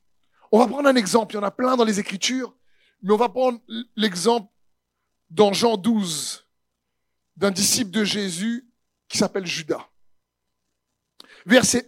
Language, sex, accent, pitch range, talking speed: French, male, French, 185-240 Hz, 145 wpm